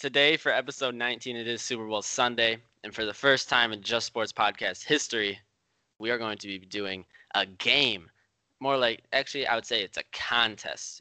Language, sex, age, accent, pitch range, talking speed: English, male, 10-29, American, 100-125 Hz, 195 wpm